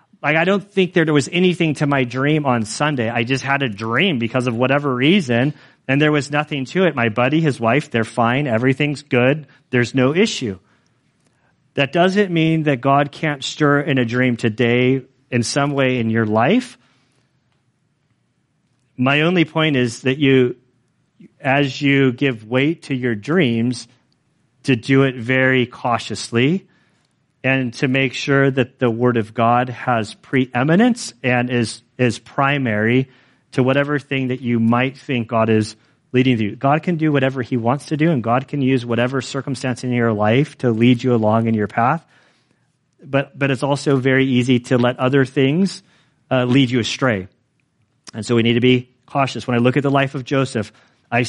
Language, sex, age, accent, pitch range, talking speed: English, male, 40-59, American, 120-145 Hz, 180 wpm